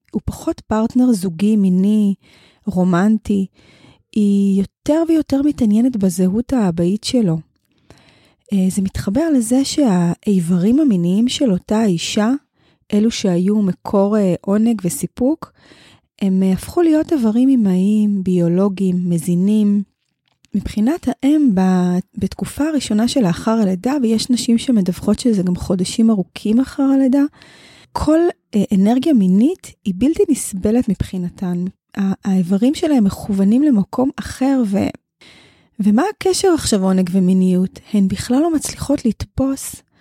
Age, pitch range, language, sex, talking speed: 20-39, 190-255 Hz, Hebrew, female, 110 wpm